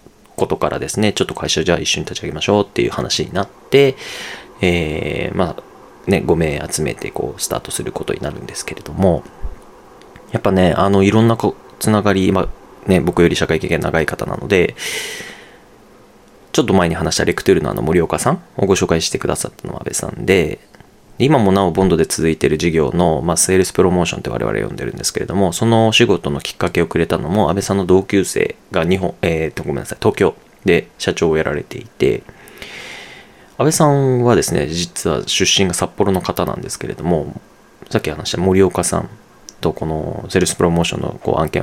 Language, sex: Japanese, male